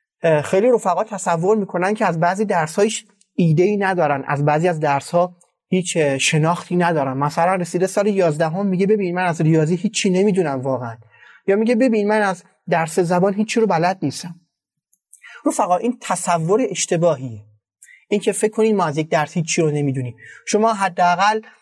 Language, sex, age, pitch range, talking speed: Persian, male, 30-49, 160-210 Hz, 165 wpm